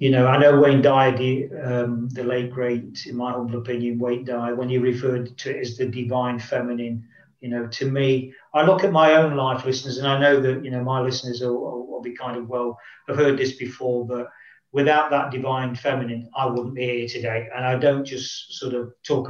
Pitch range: 120-165 Hz